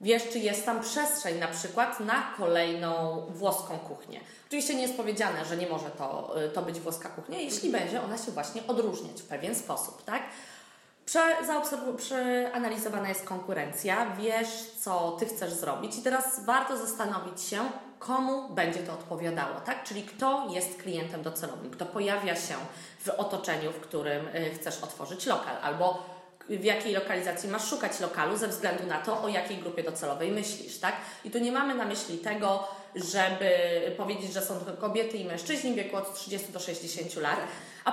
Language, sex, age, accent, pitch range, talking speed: Polish, female, 20-39, native, 175-230 Hz, 170 wpm